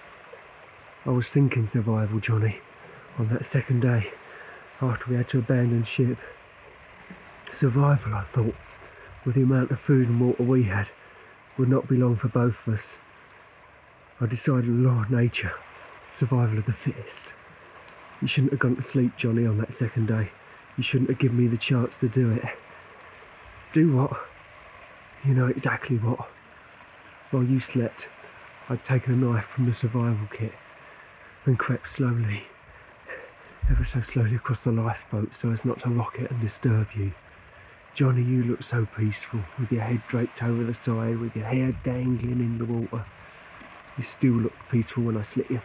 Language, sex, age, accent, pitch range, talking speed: English, male, 40-59, British, 115-130 Hz, 165 wpm